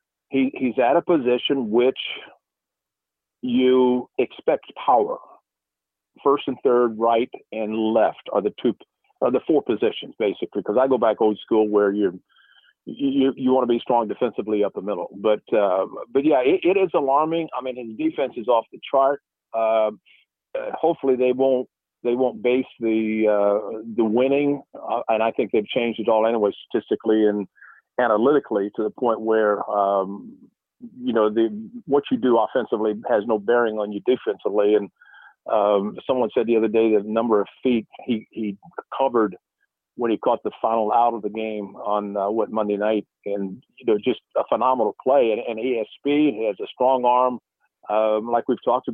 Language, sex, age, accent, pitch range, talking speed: English, male, 50-69, American, 110-130 Hz, 180 wpm